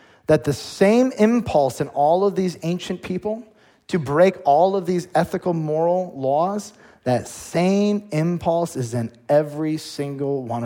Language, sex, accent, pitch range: English, male, American, 135-190 Hz